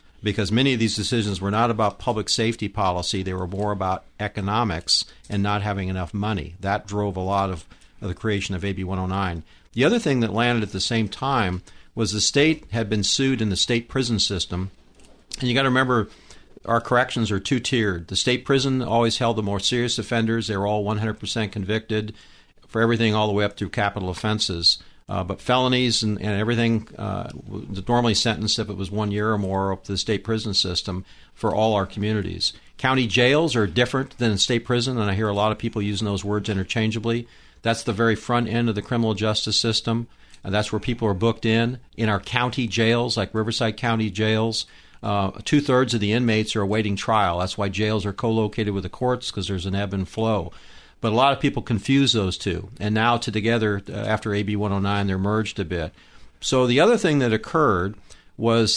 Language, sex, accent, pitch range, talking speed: English, male, American, 100-115 Hz, 205 wpm